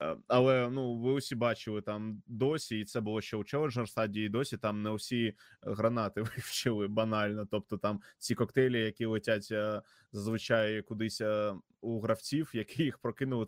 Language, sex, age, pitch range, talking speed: Ukrainian, male, 20-39, 105-115 Hz, 145 wpm